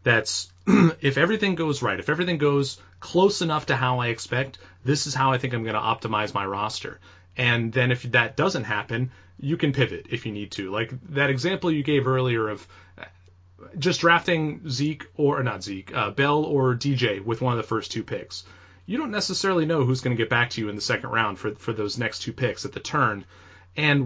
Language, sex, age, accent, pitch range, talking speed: English, male, 30-49, American, 105-145 Hz, 220 wpm